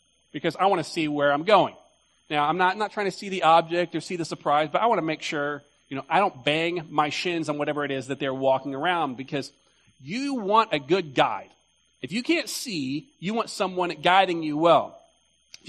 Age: 40-59